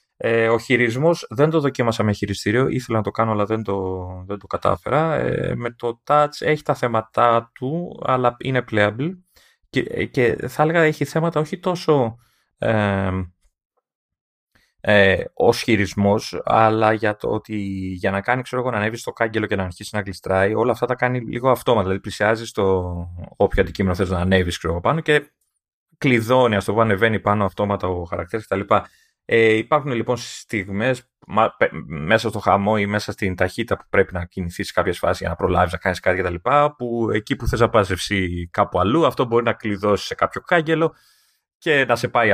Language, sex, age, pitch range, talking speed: Greek, male, 20-39, 100-140 Hz, 180 wpm